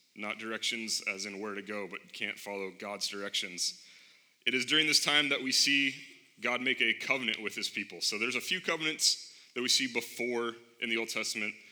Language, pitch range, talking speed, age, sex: English, 105-135 Hz, 205 wpm, 30-49, male